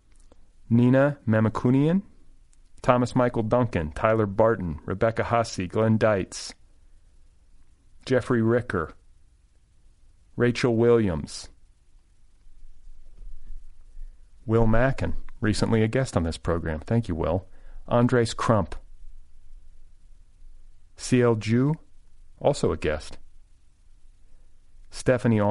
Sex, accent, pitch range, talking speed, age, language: male, American, 85-105 Hz, 80 wpm, 40-59, English